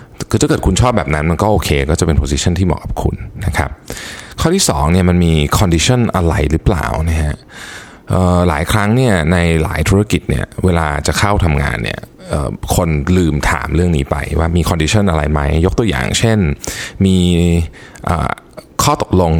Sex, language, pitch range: male, Thai, 80-105 Hz